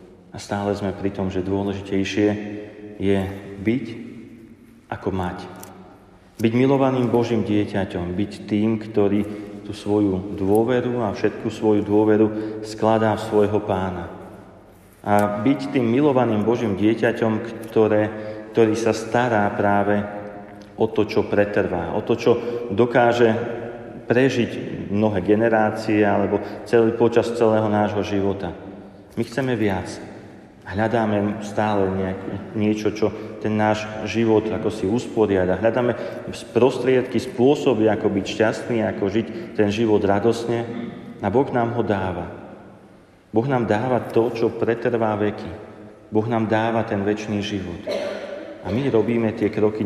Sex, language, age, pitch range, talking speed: male, Slovak, 40-59, 100-115 Hz, 125 wpm